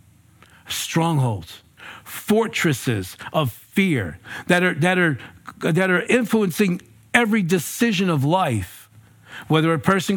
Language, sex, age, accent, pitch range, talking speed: English, male, 50-69, American, 120-190 Hz, 105 wpm